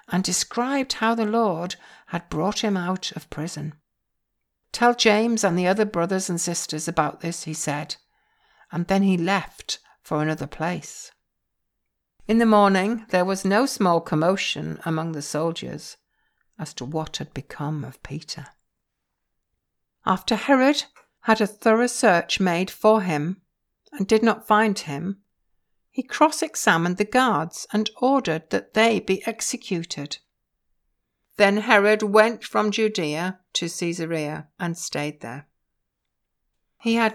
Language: English